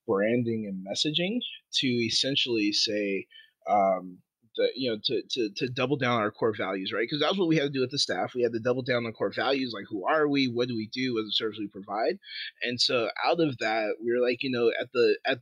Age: 30-49